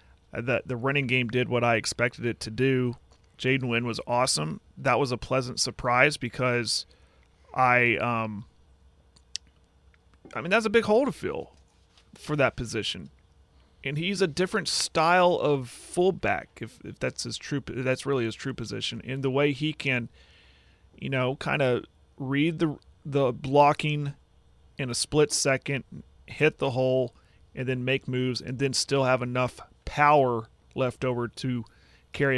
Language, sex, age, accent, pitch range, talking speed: English, male, 30-49, American, 110-140 Hz, 155 wpm